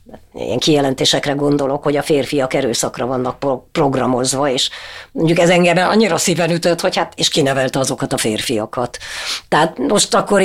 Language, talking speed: Hungarian, 150 wpm